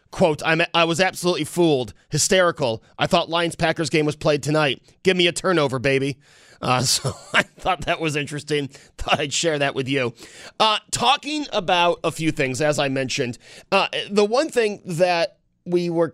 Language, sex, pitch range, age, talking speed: English, male, 135-175 Hz, 30-49, 175 wpm